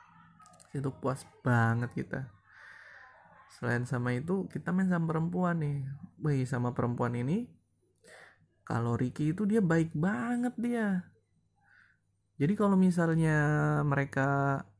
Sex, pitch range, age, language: male, 120-165 Hz, 20-39, Indonesian